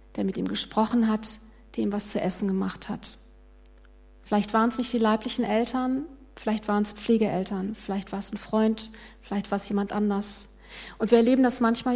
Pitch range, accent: 200-225 Hz, German